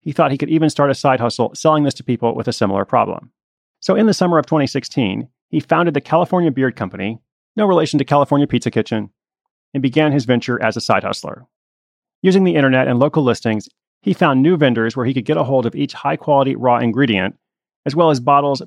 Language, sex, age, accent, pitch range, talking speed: English, male, 30-49, American, 120-155 Hz, 220 wpm